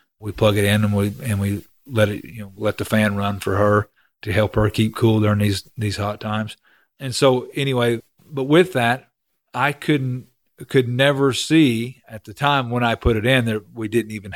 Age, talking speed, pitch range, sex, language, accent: 40-59, 215 wpm, 105-120 Hz, male, English, American